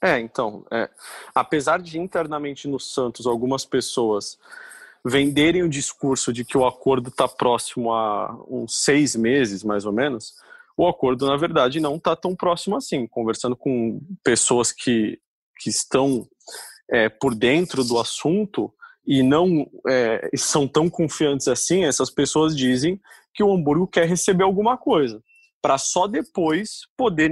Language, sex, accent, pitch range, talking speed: Portuguese, male, Brazilian, 135-200 Hz, 140 wpm